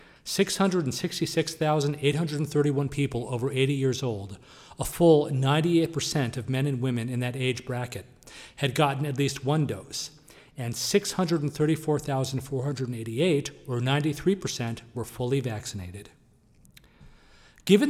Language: English